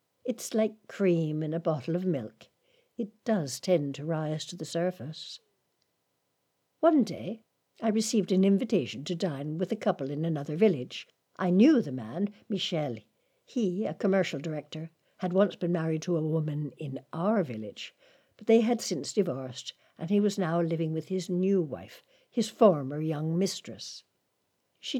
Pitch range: 155-195 Hz